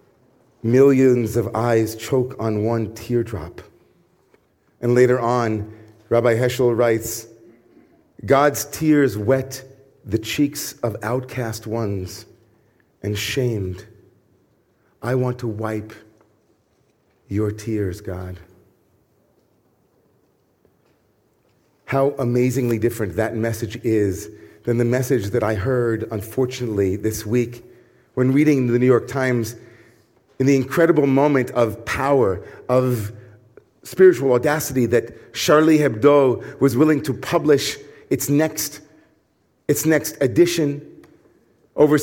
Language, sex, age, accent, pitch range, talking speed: English, male, 40-59, American, 115-140 Hz, 105 wpm